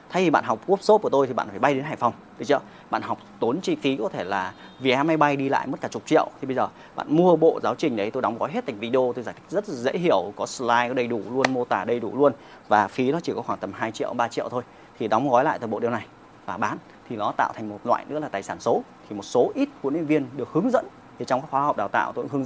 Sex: male